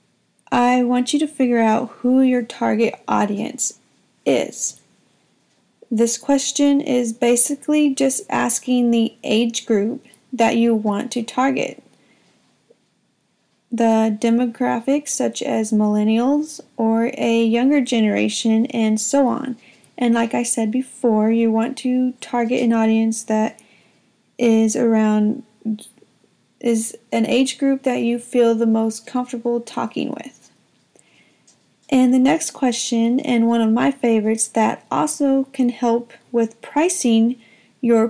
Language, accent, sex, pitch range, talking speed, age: English, American, female, 225-255 Hz, 125 wpm, 30-49